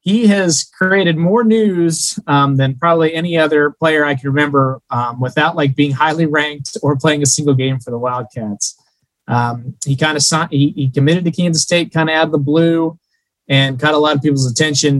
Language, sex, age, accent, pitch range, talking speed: English, male, 20-39, American, 135-160 Hz, 205 wpm